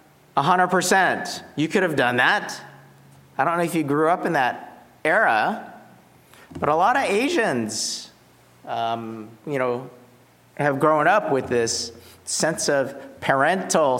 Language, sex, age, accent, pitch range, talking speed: English, male, 40-59, American, 100-140 Hz, 135 wpm